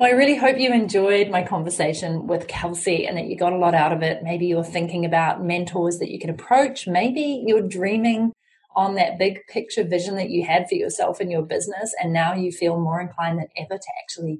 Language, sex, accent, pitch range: English, female, Australian, 170-215 Hz